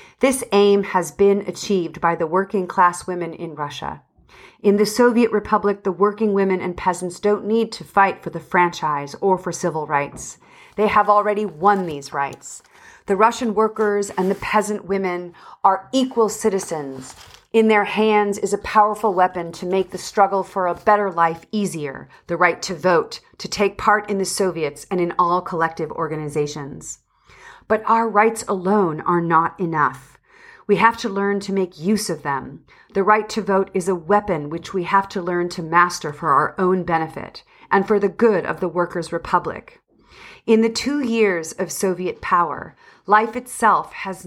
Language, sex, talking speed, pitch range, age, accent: English, female, 175 wpm, 175-210 Hz, 40-59, American